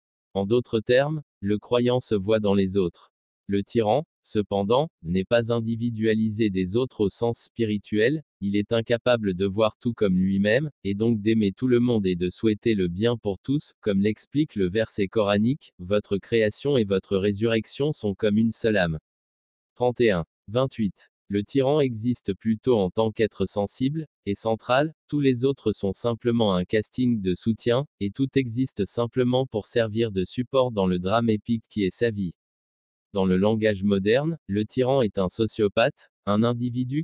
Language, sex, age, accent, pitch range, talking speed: French, male, 20-39, French, 100-120 Hz, 170 wpm